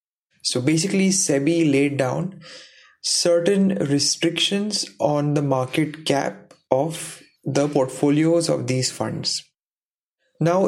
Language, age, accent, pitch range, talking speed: English, 20-39, Indian, 140-175 Hz, 100 wpm